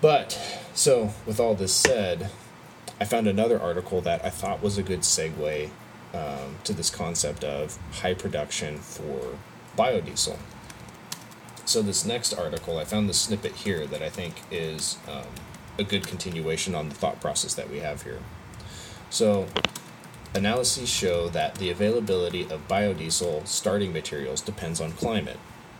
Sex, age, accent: male, 30-49, American